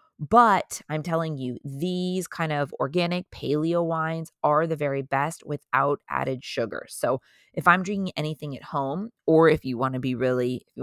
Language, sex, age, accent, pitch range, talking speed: English, female, 20-39, American, 145-180 Hz, 175 wpm